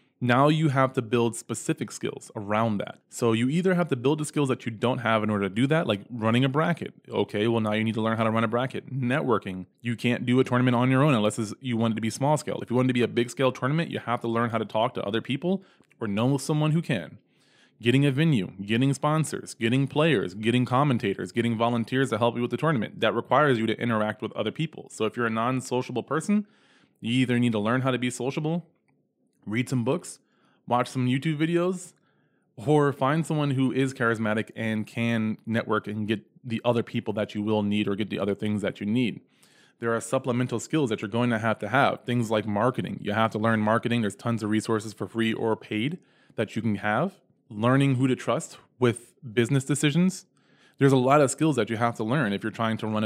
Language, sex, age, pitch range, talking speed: English, male, 20-39, 110-135 Hz, 235 wpm